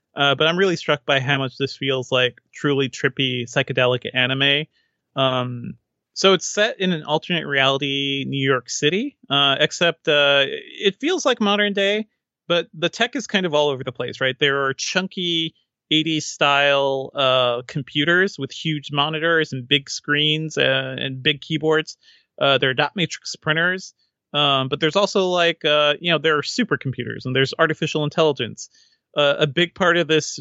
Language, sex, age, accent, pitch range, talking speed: English, male, 30-49, American, 135-165 Hz, 175 wpm